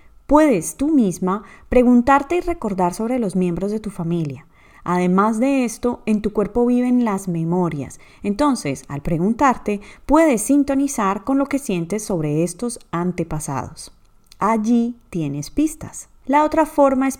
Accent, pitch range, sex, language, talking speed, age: Colombian, 175-260 Hz, female, Spanish, 140 wpm, 30-49